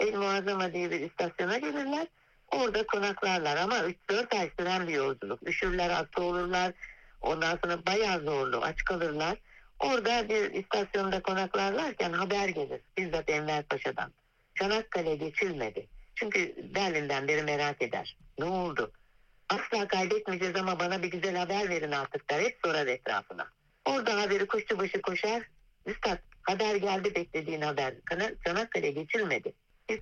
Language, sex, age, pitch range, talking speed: Turkish, female, 60-79, 165-210 Hz, 130 wpm